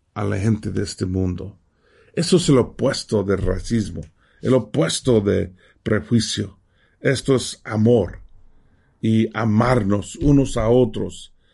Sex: male